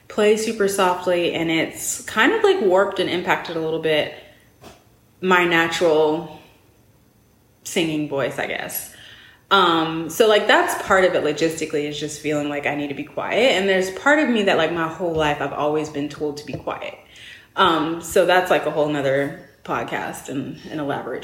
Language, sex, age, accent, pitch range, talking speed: English, female, 20-39, American, 150-190 Hz, 185 wpm